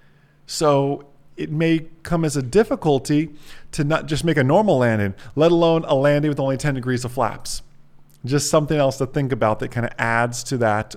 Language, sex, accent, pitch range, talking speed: English, male, American, 125-165 Hz, 195 wpm